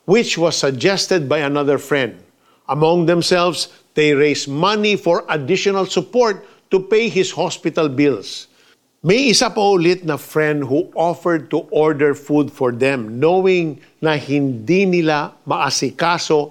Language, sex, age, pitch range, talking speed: Filipino, male, 50-69, 135-170 Hz, 135 wpm